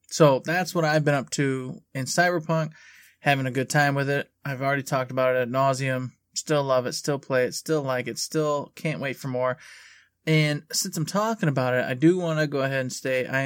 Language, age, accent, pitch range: English, 20-39, American, 125-155 Hz